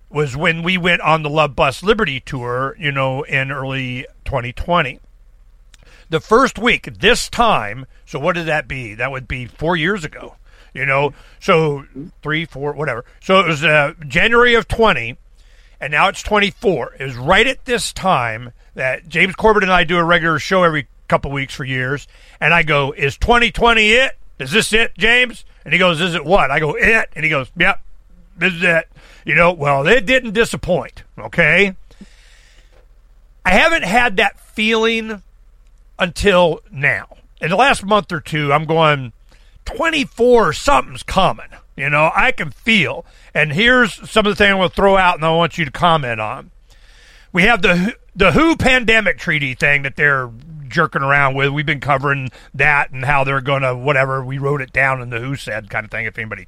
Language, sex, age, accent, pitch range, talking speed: English, male, 50-69, American, 135-195 Hz, 185 wpm